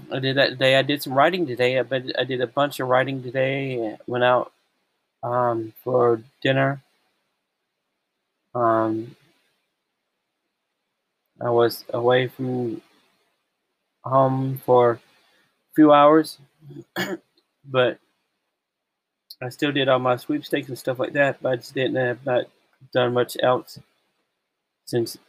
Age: 30-49